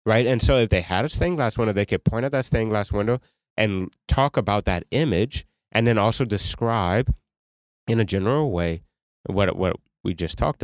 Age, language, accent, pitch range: 30-49, English, American, 85-110 Hz